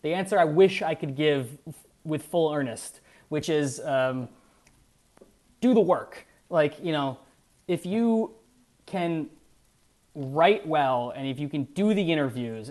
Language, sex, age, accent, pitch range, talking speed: English, male, 20-39, American, 145-190 Hz, 150 wpm